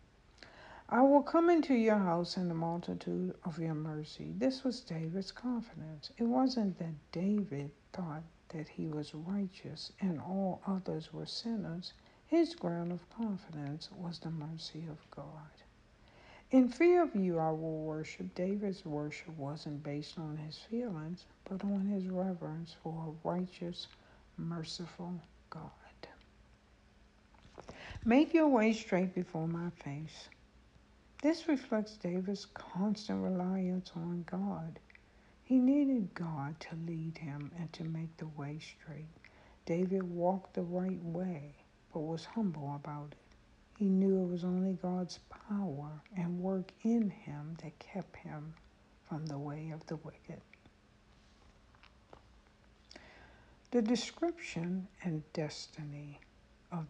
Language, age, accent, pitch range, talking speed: English, 60-79, American, 155-195 Hz, 130 wpm